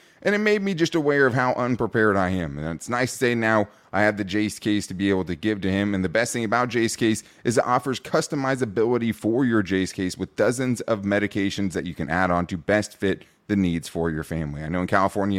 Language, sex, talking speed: English, male, 255 wpm